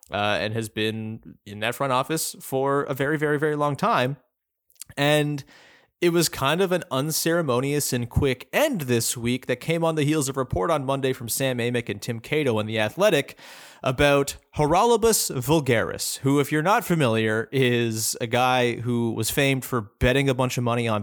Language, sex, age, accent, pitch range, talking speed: English, male, 30-49, American, 120-160 Hz, 190 wpm